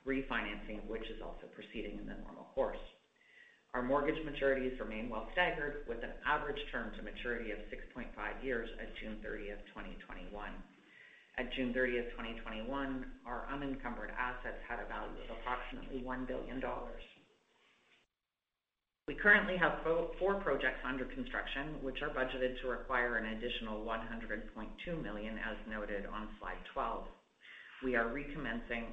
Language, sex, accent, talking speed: English, female, American, 135 wpm